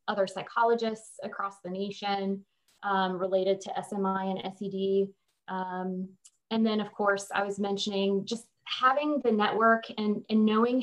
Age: 20-39